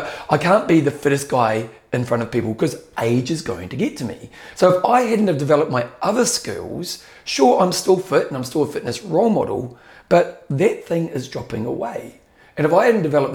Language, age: English, 40-59